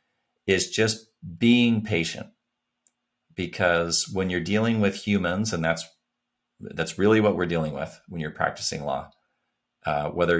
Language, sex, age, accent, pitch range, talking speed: English, male, 40-59, American, 80-100 Hz, 140 wpm